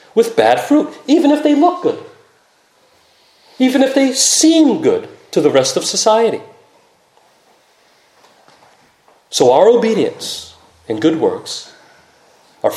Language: English